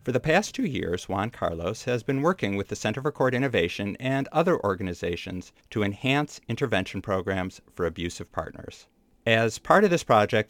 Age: 50-69